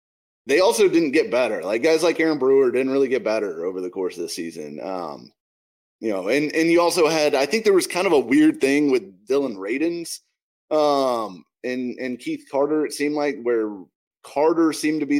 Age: 30-49